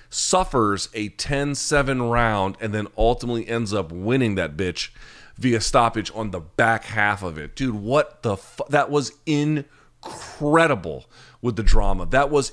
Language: English